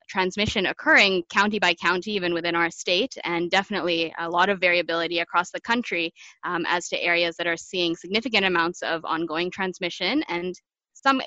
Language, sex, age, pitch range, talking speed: English, female, 20-39, 170-200 Hz, 170 wpm